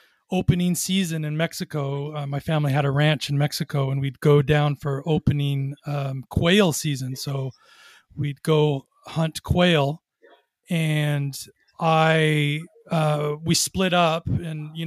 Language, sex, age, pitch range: English, male, 30-49, 150-170 Hz